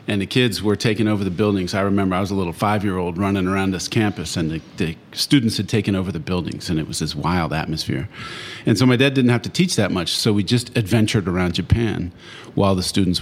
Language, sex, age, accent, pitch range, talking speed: English, male, 40-59, American, 90-115 Hz, 240 wpm